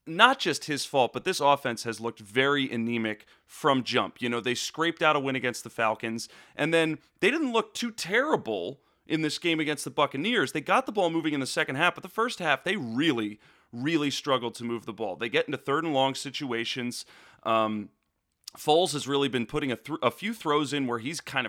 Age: 30-49